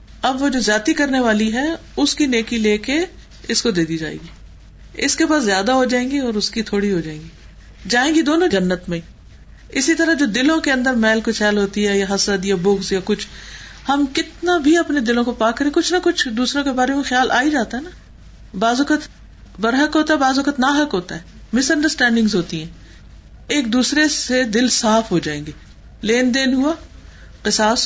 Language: Urdu